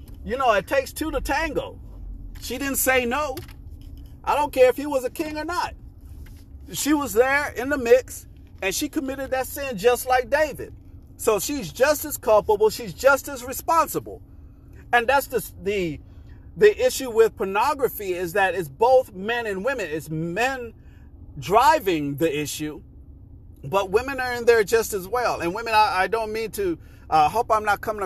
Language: English